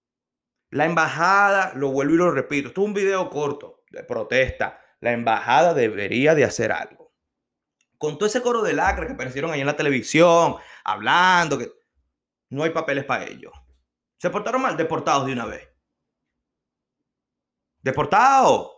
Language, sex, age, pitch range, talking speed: Spanish, male, 30-49, 170-235 Hz, 150 wpm